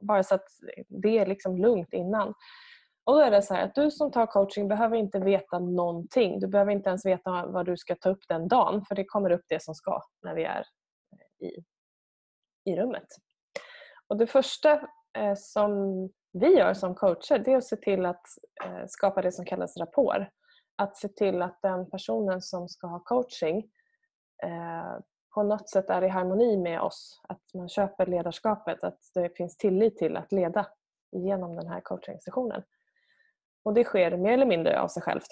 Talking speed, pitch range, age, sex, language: 190 wpm, 185-240 Hz, 20-39, female, Swedish